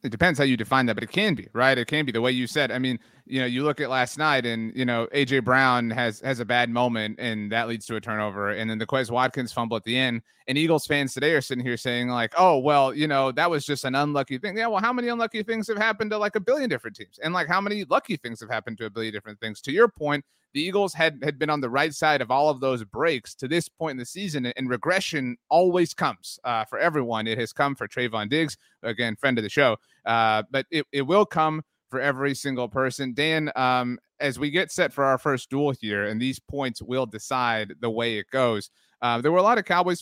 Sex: male